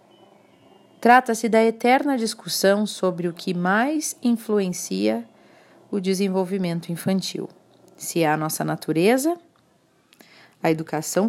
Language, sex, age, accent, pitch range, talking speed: Portuguese, female, 40-59, Brazilian, 170-245 Hz, 100 wpm